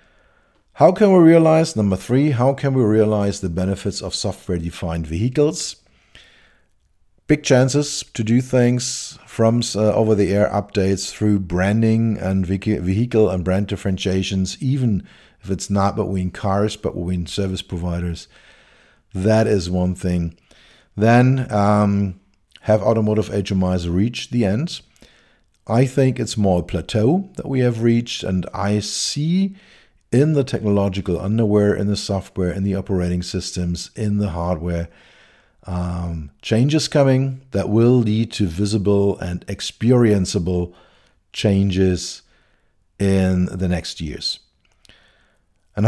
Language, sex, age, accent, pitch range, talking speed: English, male, 50-69, German, 90-115 Hz, 125 wpm